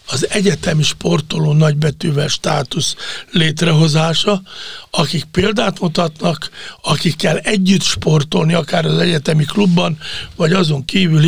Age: 60-79